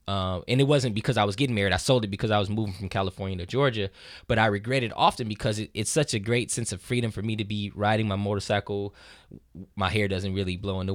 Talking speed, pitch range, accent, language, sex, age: 265 wpm, 105-130 Hz, American, English, male, 10-29